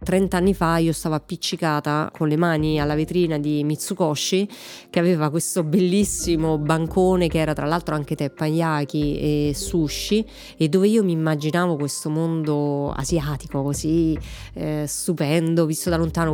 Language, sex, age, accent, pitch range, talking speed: Italian, female, 30-49, native, 150-180 Hz, 145 wpm